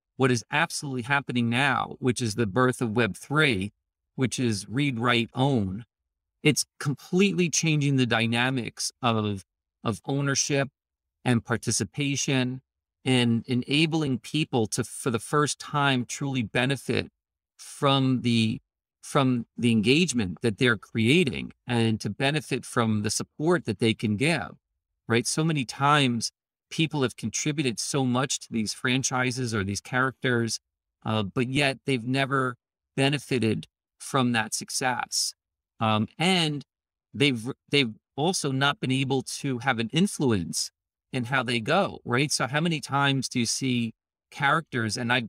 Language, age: English, 40-59